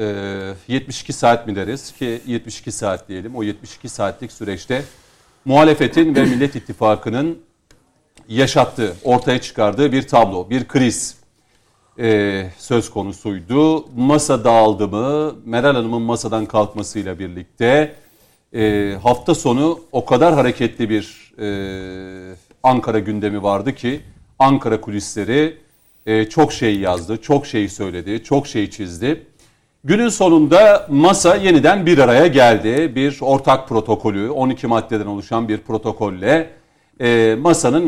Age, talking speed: 40-59, 110 wpm